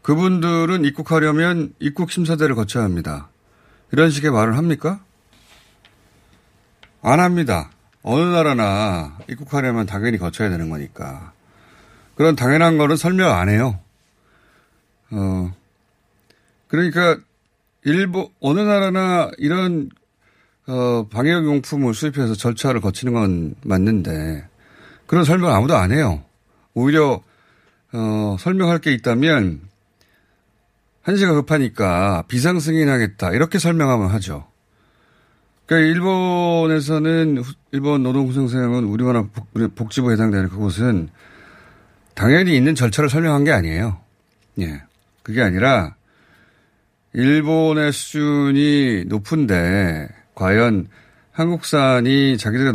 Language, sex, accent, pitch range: Korean, male, native, 100-155 Hz